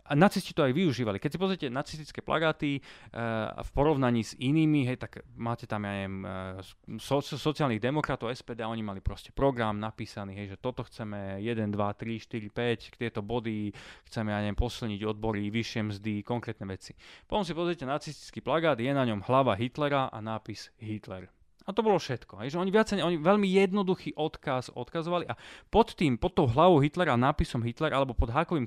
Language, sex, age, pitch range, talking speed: Slovak, male, 20-39, 110-145 Hz, 185 wpm